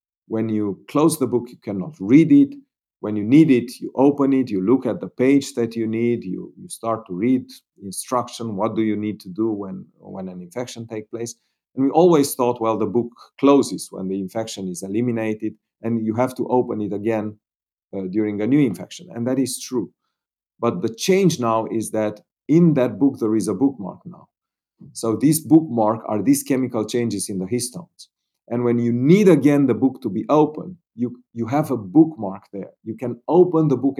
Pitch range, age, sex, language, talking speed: 105-135 Hz, 40-59, male, English, 205 wpm